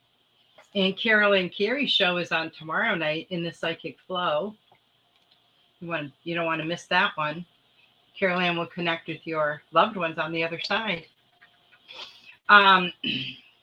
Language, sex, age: English, female, 40-59